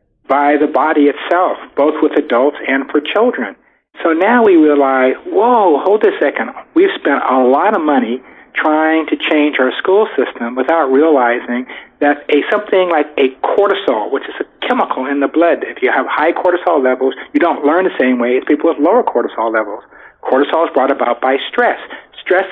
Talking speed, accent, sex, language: 185 wpm, American, male, English